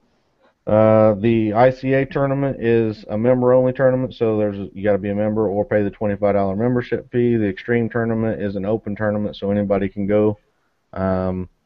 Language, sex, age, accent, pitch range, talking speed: English, male, 30-49, American, 105-120 Hz, 180 wpm